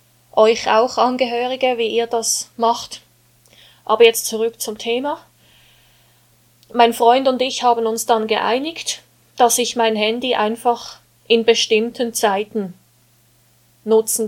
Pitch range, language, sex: 185-245 Hz, German, female